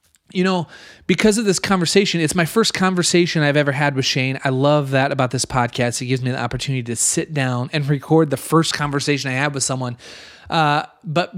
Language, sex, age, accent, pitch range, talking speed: English, male, 30-49, American, 135-165 Hz, 210 wpm